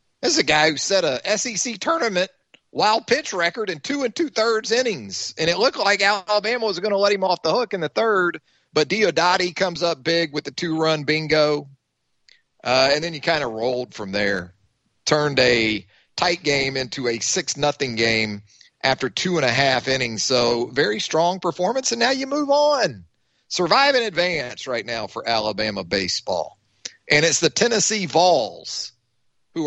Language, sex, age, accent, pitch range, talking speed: English, male, 40-59, American, 125-195 Hz, 180 wpm